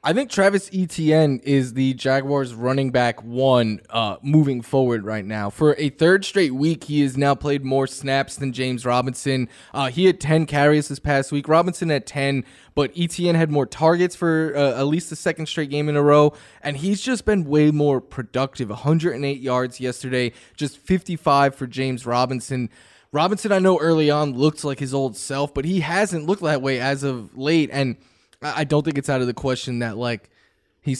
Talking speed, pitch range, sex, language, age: 195 wpm, 130-155 Hz, male, English, 20-39